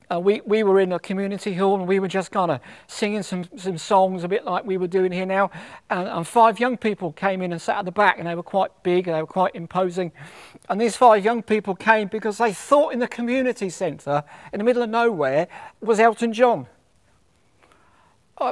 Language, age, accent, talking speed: English, 50-69, British, 225 wpm